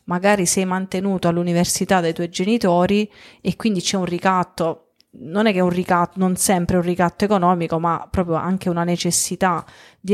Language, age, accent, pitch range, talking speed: Italian, 30-49, native, 175-215 Hz, 170 wpm